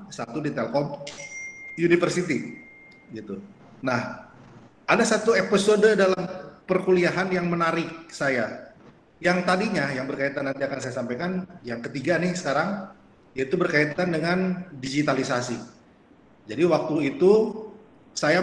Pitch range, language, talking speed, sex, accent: 130-180 Hz, Indonesian, 110 wpm, male, native